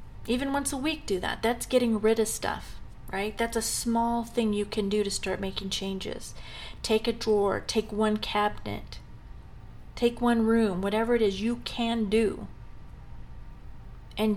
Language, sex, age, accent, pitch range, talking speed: English, female, 40-59, American, 195-230 Hz, 165 wpm